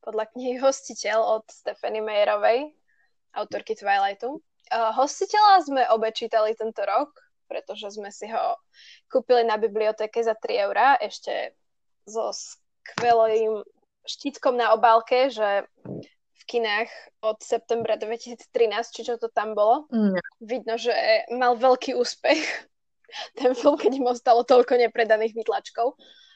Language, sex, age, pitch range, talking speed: Slovak, female, 10-29, 225-295 Hz, 125 wpm